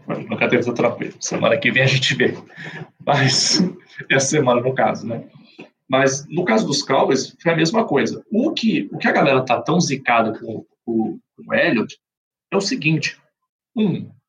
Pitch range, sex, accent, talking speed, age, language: 125-175 Hz, male, Brazilian, 180 wpm, 40-59, Portuguese